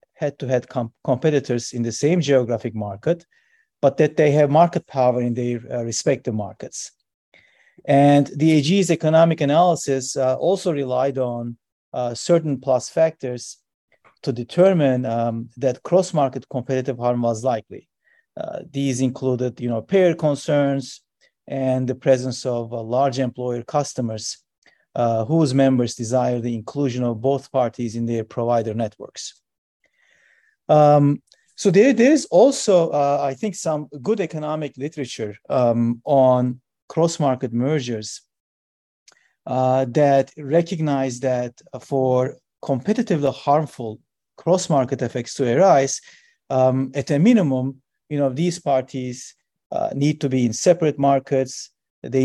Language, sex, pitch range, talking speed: English, male, 125-155 Hz, 130 wpm